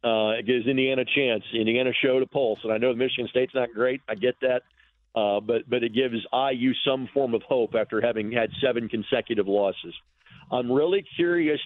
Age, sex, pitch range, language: 50-69, male, 110-135 Hz, English